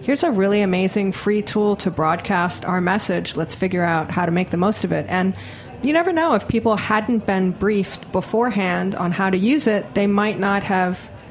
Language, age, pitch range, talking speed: English, 30-49, 185-235 Hz, 205 wpm